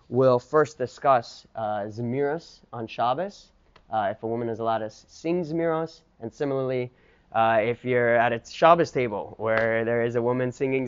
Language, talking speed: English, 170 wpm